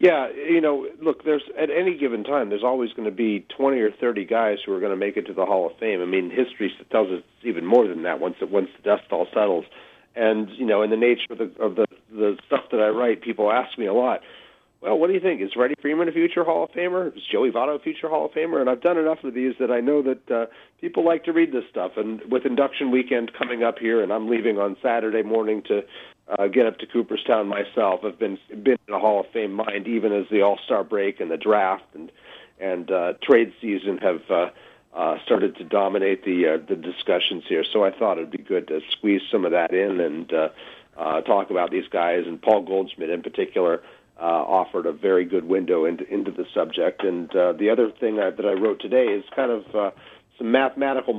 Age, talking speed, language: 40-59, 245 wpm, English